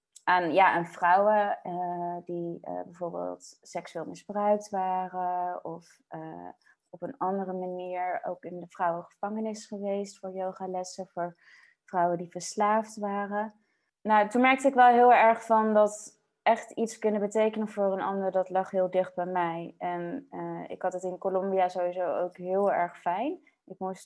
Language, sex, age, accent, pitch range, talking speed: English, female, 20-39, Dutch, 185-220 Hz, 165 wpm